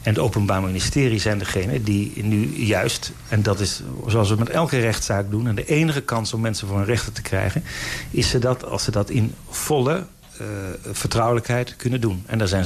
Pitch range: 100-125 Hz